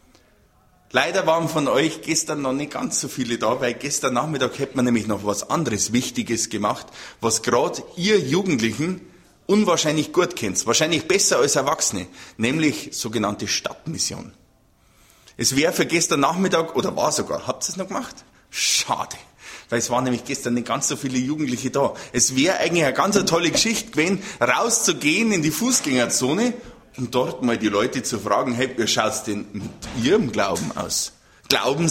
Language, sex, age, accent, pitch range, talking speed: German, male, 30-49, Austrian, 120-175 Hz, 170 wpm